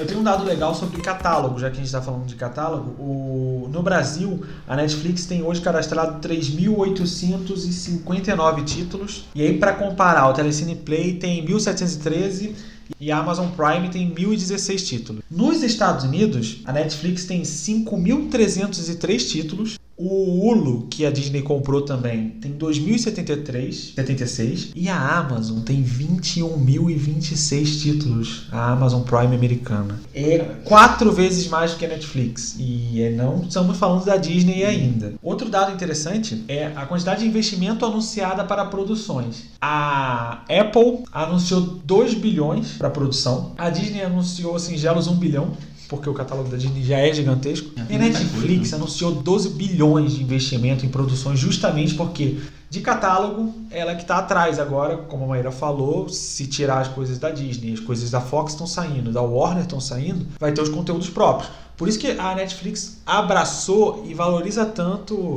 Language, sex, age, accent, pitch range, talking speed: Portuguese, male, 20-39, Brazilian, 135-185 Hz, 155 wpm